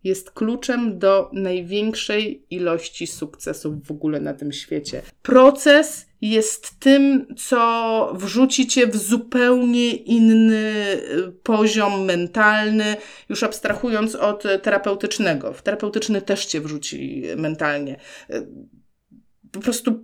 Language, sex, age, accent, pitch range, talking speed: Polish, female, 30-49, native, 185-245 Hz, 100 wpm